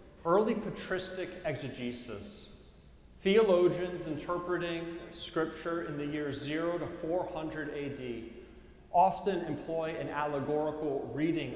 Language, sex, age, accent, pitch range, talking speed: English, male, 40-59, American, 130-165 Hz, 95 wpm